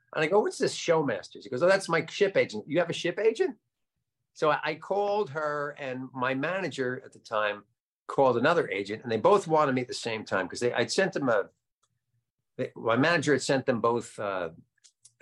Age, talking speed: 50-69, 215 wpm